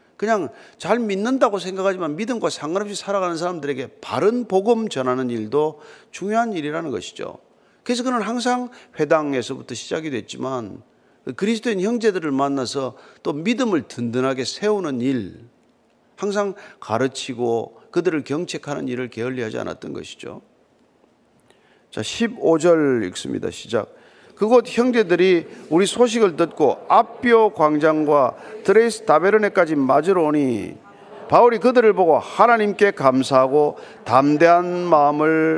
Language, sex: Korean, male